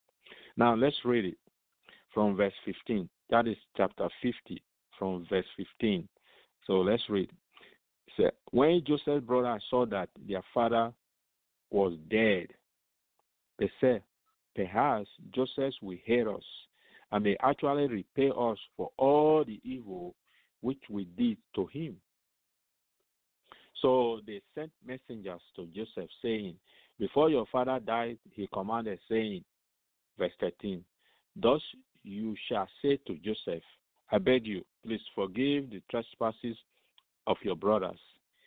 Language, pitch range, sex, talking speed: English, 100-125 Hz, male, 125 wpm